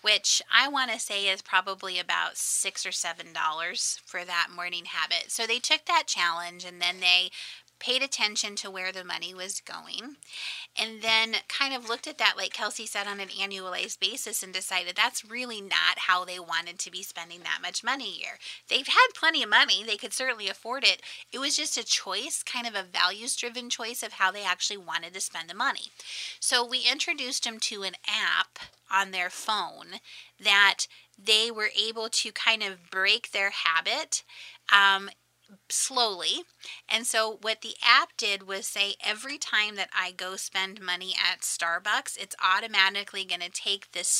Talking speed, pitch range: 185 wpm, 185-225 Hz